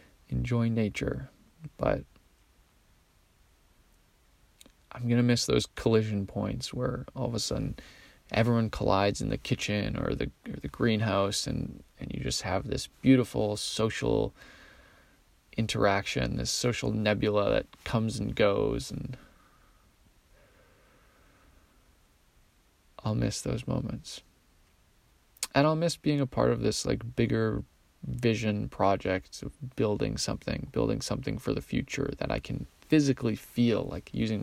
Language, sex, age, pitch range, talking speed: English, male, 20-39, 100-125 Hz, 125 wpm